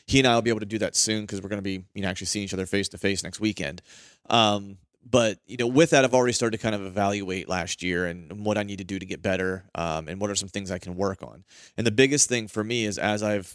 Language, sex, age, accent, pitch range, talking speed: English, male, 30-49, American, 95-110 Hz, 310 wpm